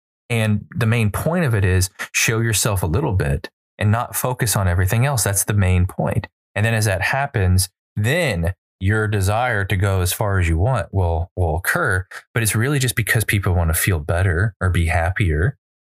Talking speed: 200 wpm